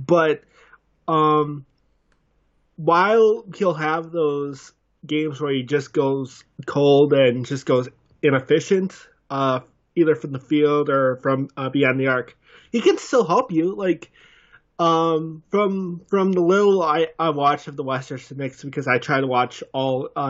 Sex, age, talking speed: male, 20-39, 155 wpm